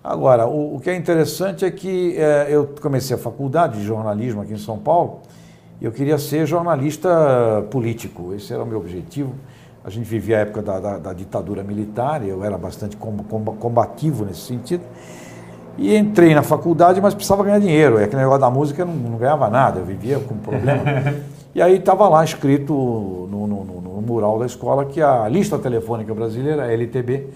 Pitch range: 115-155 Hz